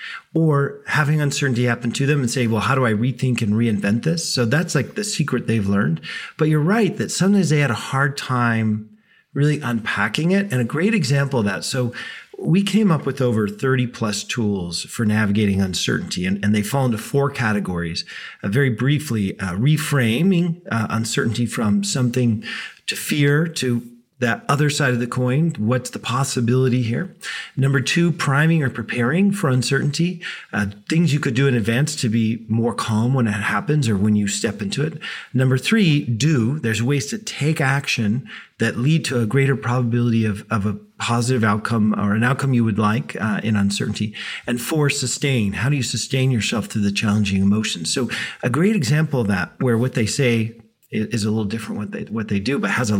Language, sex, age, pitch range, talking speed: English, male, 40-59, 110-145 Hz, 195 wpm